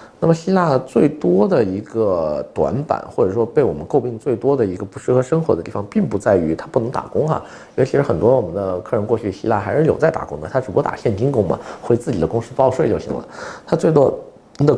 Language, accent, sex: Chinese, native, male